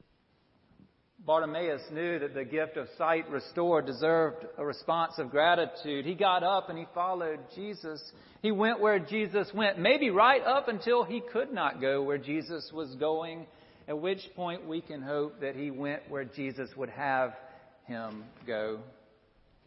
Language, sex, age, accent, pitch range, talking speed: English, male, 40-59, American, 145-190 Hz, 160 wpm